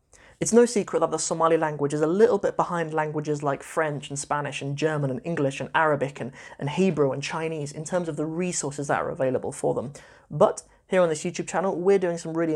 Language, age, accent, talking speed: English, 30-49, British, 230 wpm